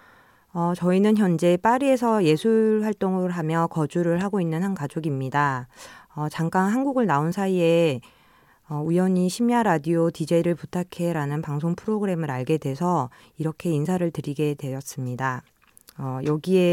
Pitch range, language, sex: 145-185 Hz, Korean, female